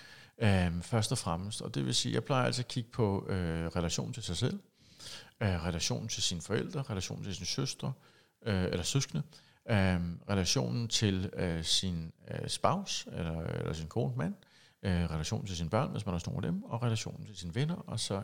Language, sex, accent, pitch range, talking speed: Danish, male, native, 95-130 Hz, 195 wpm